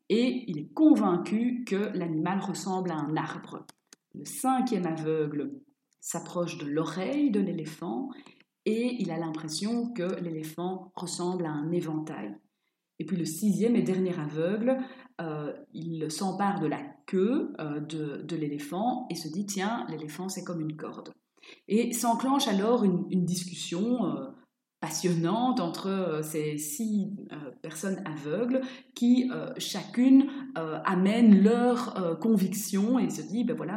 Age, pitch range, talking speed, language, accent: 30-49, 165-240 Hz, 150 wpm, French, French